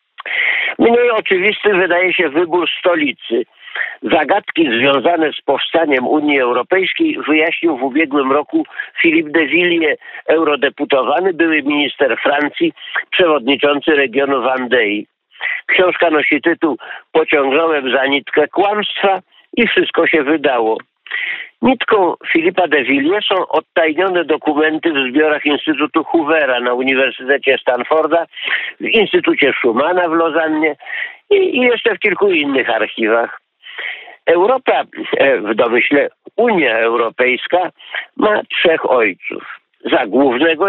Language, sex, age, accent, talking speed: Polish, male, 50-69, native, 105 wpm